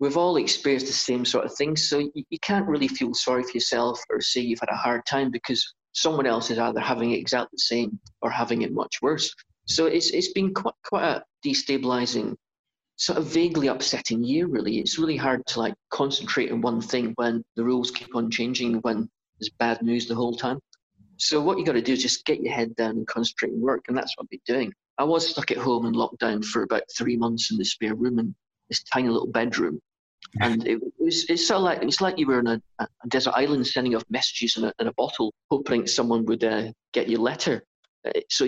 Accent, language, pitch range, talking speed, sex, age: British, English, 115-140 Hz, 230 wpm, male, 40-59